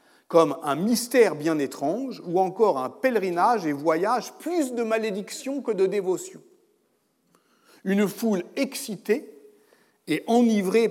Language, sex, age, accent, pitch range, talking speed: French, male, 50-69, French, 165-260 Hz, 120 wpm